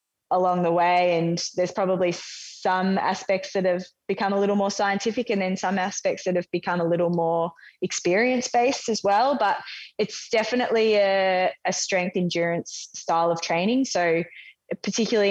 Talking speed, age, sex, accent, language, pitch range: 155 wpm, 20-39, female, Australian, English, 165-195 Hz